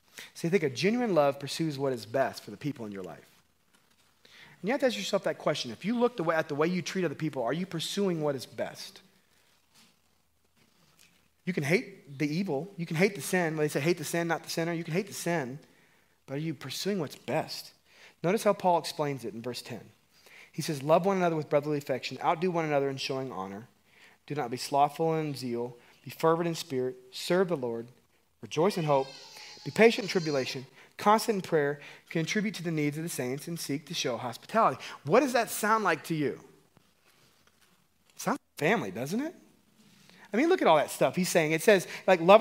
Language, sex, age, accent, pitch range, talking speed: English, male, 30-49, American, 140-195 Hz, 215 wpm